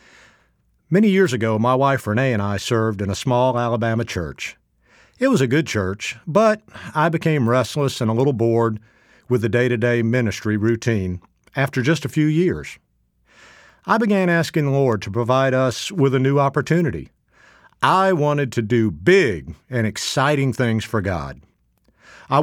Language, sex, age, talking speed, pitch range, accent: English, male, 50-69, 160 wpm, 110-150 Hz, American